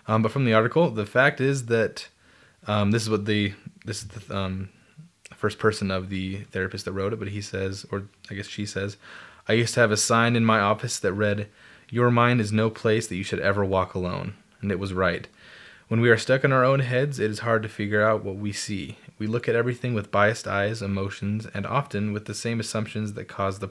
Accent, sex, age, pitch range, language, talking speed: American, male, 20-39, 100-115 Hz, English, 240 wpm